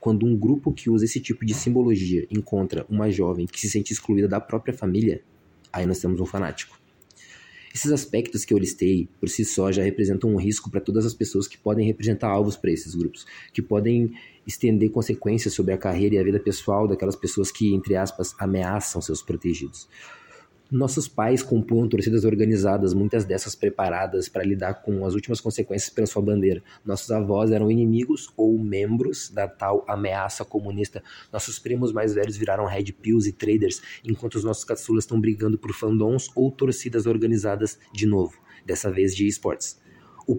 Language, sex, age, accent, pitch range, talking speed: Portuguese, male, 20-39, Brazilian, 95-115 Hz, 180 wpm